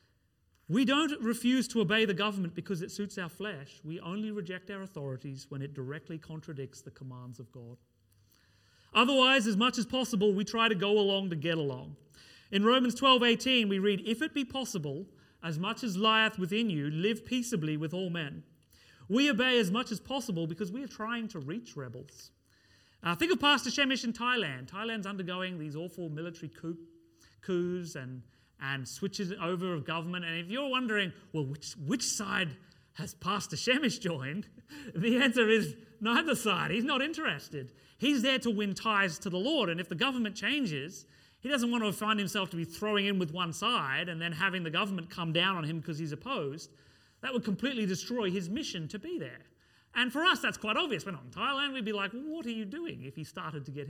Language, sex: English, male